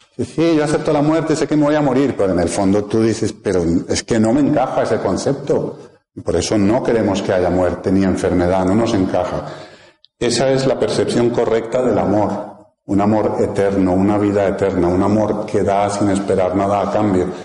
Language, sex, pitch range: Spanish, male, 100-120 Hz